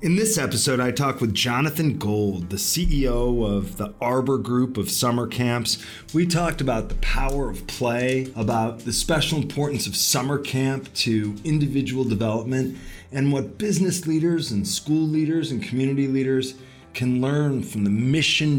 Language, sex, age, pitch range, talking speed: English, male, 30-49, 110-145 Hz, 160 wpm